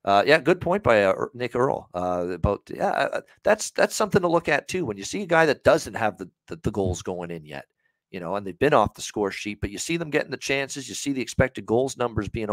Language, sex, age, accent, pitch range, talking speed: English, male, 40-59, American, 95-130 Hz, 275 wpm